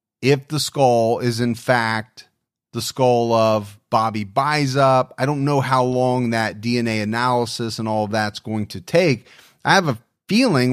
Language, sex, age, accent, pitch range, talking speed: English, male, 30-49, American, 115-135 Hz, 175 wpm